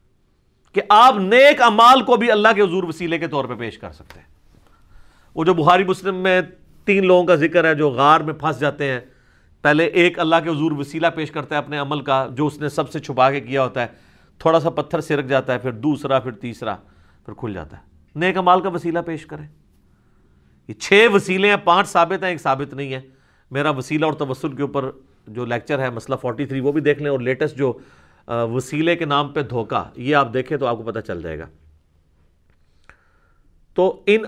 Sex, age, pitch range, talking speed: male, 40-59, 115-175 Hz, 215 wpm